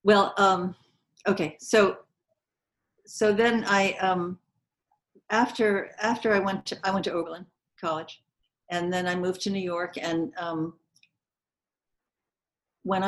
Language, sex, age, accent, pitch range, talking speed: English, female, 50-69, American, 160-195 Hz, 130 wpm